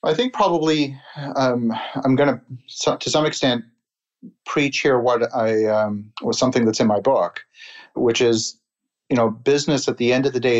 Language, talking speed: English, 180 wpm